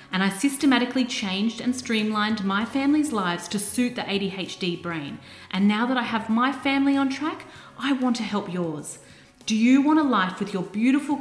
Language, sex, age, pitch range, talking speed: English, female, 30-49, 180-255 Hz, 195 wpm